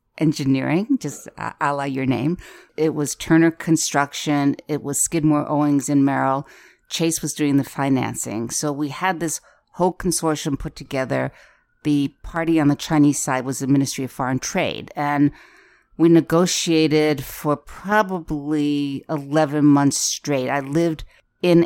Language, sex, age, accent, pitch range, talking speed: English, female, 50-69, American, 135-155 Hz, 145 wpm